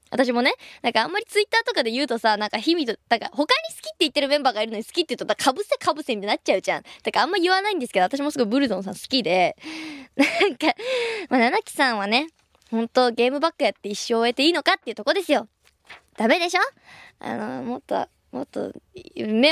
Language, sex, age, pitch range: Japanese, male, 20-39, 245-340 Hz